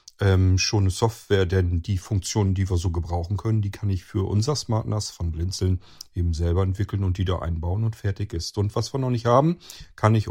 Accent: German